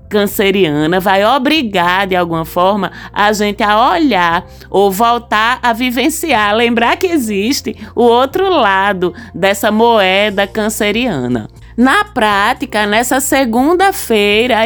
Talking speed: 110 wpm